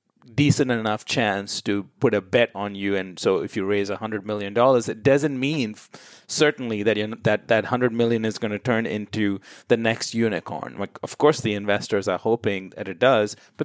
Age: 30-49